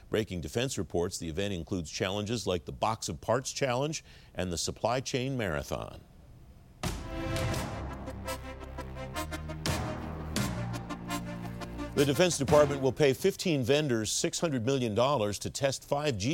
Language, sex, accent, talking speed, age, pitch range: English, male, American, 110 wpm, 50-69, 95-125 Hz